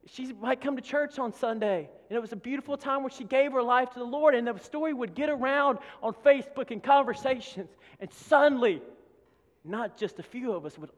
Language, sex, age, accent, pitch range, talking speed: English, male, 40-59, American, 165-250 Hz, 220 wpm